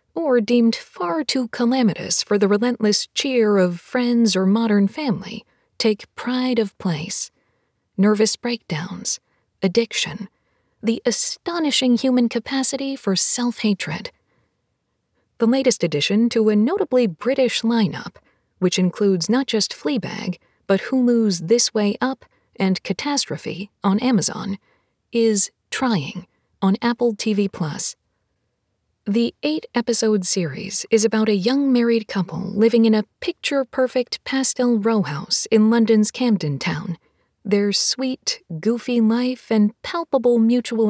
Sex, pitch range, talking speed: female, 200-245 Hz, 120 wpm